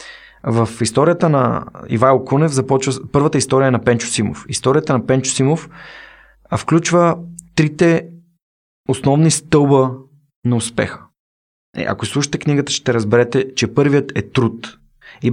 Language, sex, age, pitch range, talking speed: Bulgarian, male, 20-39, 115-155 Hz, 130 wpm